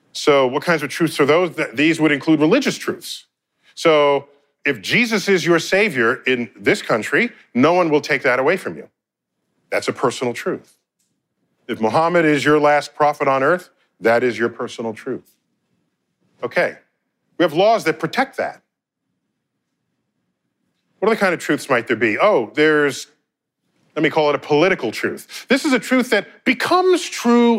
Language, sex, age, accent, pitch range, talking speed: English, male, 40-59, American, 150-200 Hz, 165 wpm